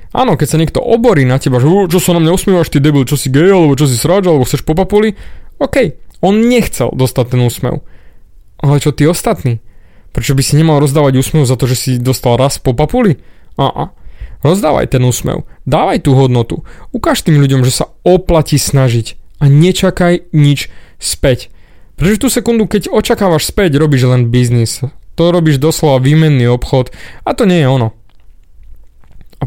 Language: Slovak